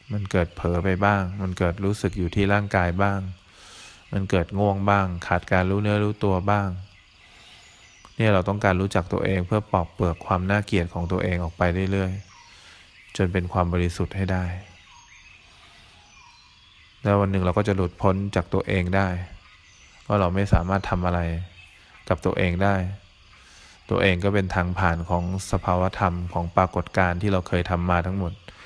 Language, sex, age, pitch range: English, male, 20-39, 90-100 Hz